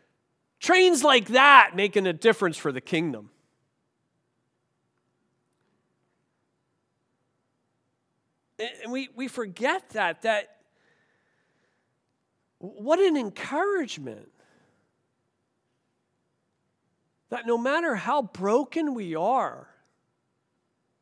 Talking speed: 70 wpm